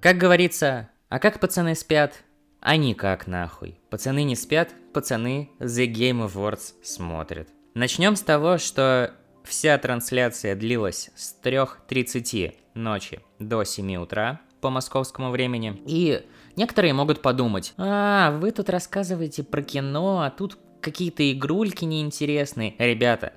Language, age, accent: Russian, 20-39, native